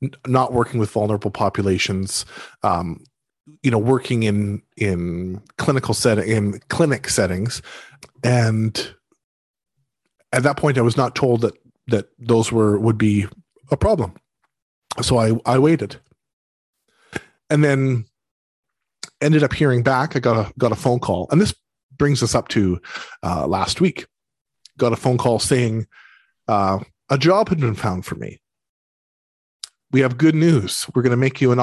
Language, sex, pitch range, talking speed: English, male, 105-130 Hz, 155 wpm